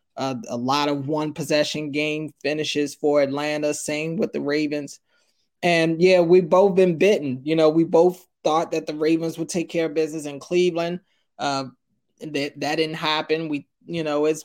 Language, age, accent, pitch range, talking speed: English, 20-39, American, 145-185 Hz, 185 wpm